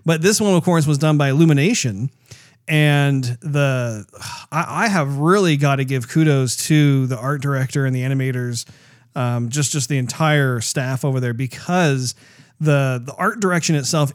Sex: male